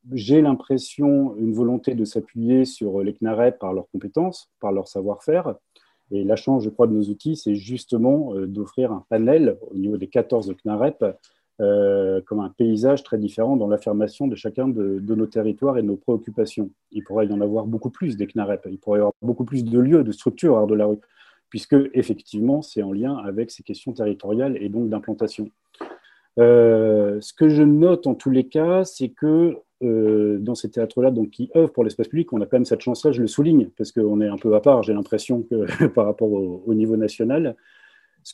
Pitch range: 105-130 Hz